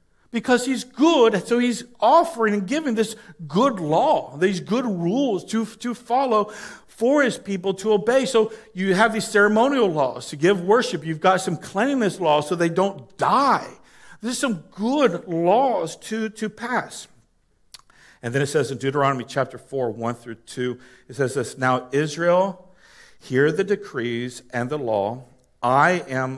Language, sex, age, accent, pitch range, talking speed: English, male, 50-69, American, 120-195 Hz, 160 wpm